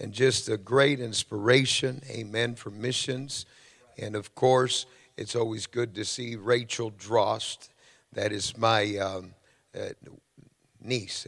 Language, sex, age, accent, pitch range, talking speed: English, male, 50-69, American, 115-135 Hz, 130 wpm